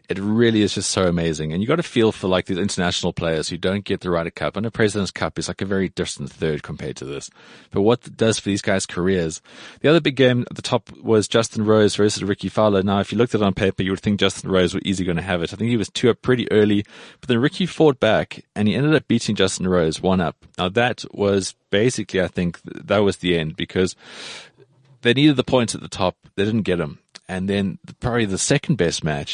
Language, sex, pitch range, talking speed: English, male, 90-115 Hz, 260 wpm